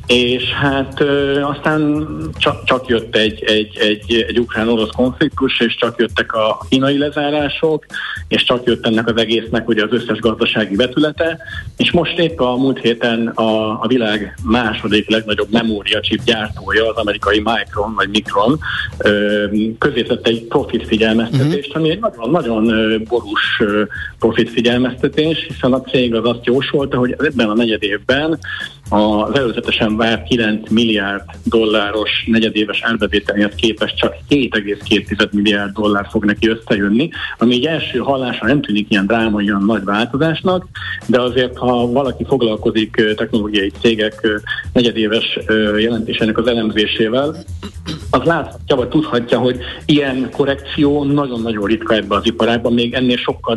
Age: 50-69